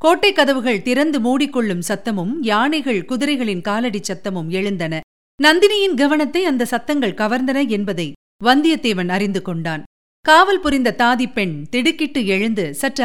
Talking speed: 120 wpm